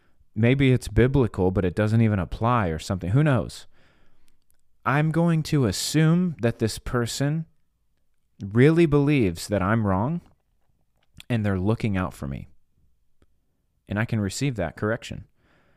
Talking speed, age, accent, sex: 135 wpm, 30-49, American, male